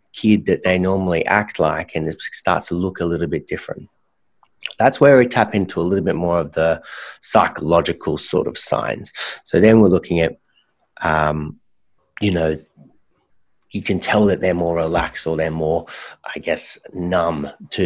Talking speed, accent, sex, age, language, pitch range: 175 wpm, Australian, male, 30-49, English, 80-95 Hz